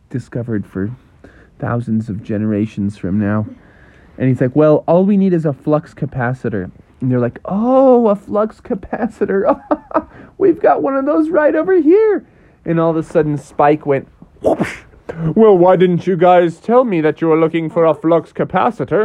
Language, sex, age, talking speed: English, male, 30-49, 175 wpm